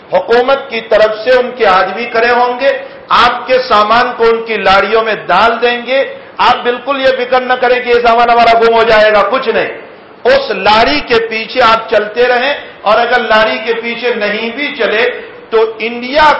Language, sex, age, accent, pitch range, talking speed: English, male, 50-69, Indian, 215-275 Hz, 175 wpm